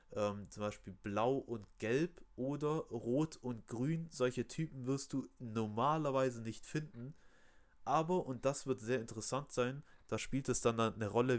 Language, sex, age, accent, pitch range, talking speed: German, male, 30-49, German, 110-140 Hz, 155 wpm